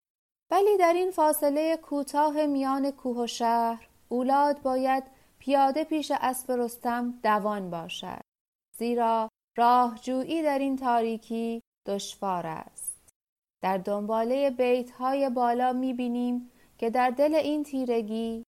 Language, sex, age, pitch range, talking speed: Persian, female, 30-49, 220-275 Hz, 105 wpm